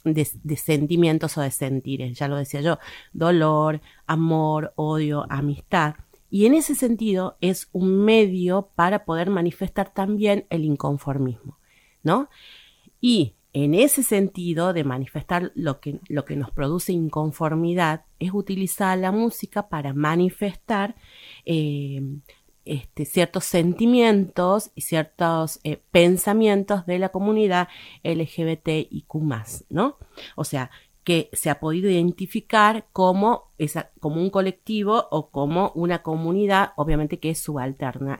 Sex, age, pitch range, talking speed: female, 30-49, 150-195 Hz, 125 wpm